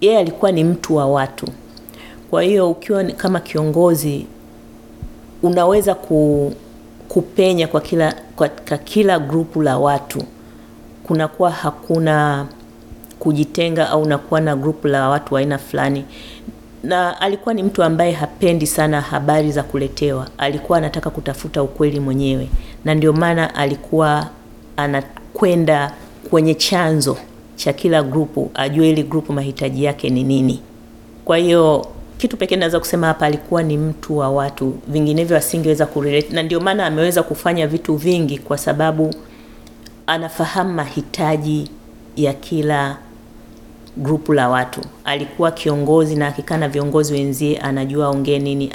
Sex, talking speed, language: female, 130 wpm, Swahili